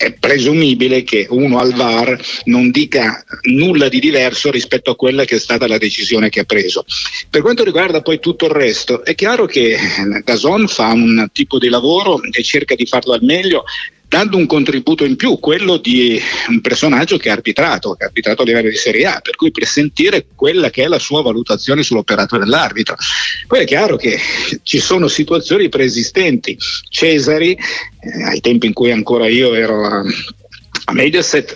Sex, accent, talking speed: male, native, 180 wpm